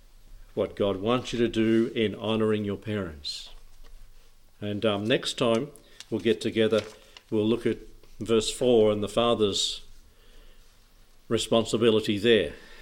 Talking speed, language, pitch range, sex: 125 wpm, English, 100-115 Hz, male